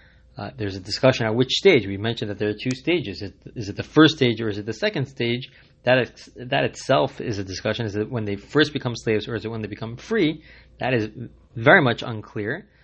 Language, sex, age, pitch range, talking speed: English, male, 20-39, 105-130 Hz, 250 wpm